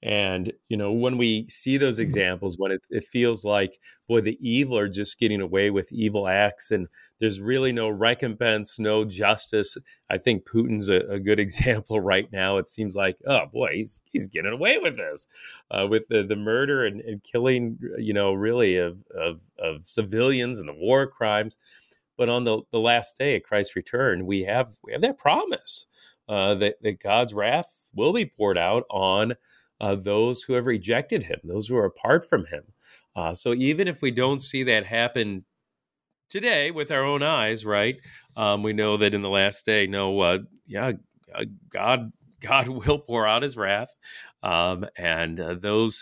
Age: 40-59